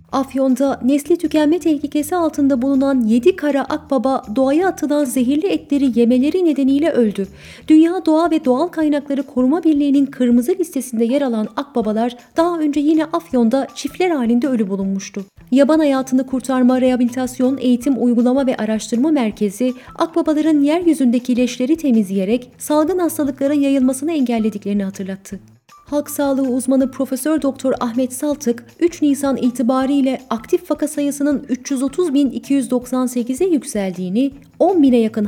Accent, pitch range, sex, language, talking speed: native, 240-295 Hz, female, Turkish, 120 wpm